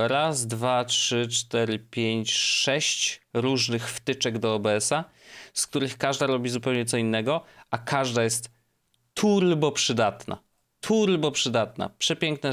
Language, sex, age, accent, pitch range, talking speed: Polish, male, 30-49, native, 110-140 Hz, 120 wpm